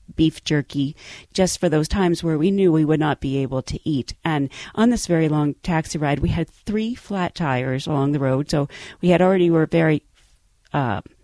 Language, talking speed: English, 205 wpm